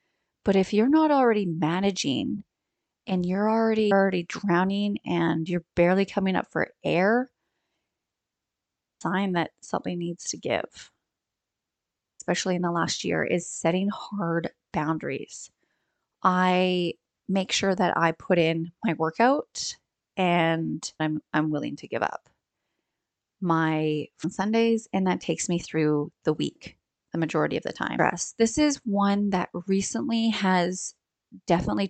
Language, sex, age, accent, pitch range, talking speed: English, female, 30-49, American, 170-205 Hz, 130 wpm